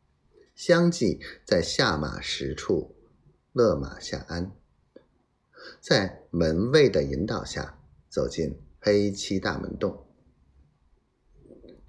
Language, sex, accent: Chinese, male, native